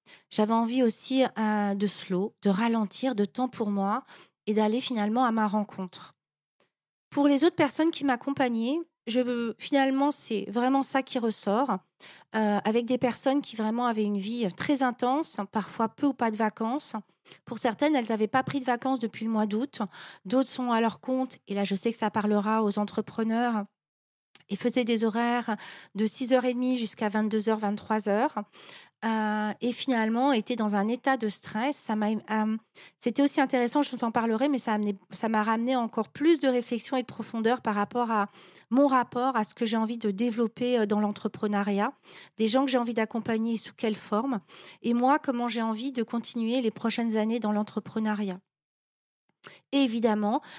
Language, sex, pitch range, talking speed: French, female, 215-250 Hz, 185 wpm